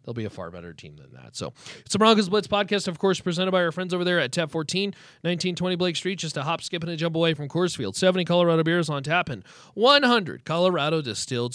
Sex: male